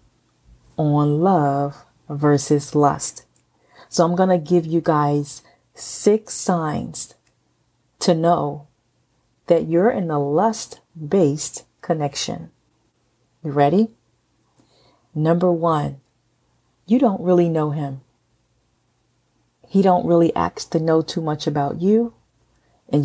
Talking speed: 105 wpm